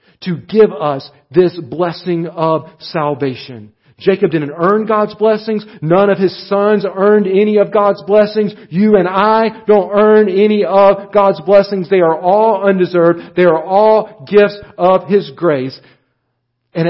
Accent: American